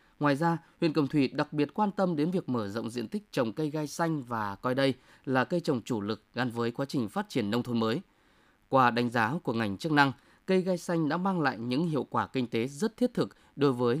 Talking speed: 255 wpm